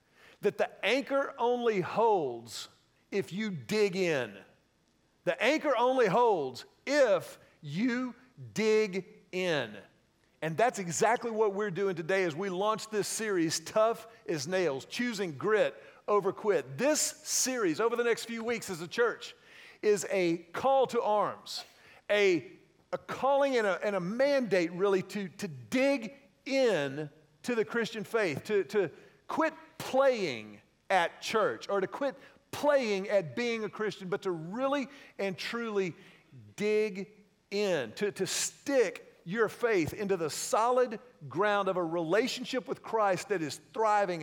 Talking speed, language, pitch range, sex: 140 wpm, English, 185-245 Hz, male